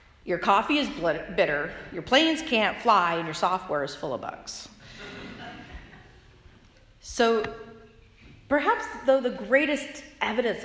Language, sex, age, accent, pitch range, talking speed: English, female, 40-59, American, 155-245 Hz, 120 wpm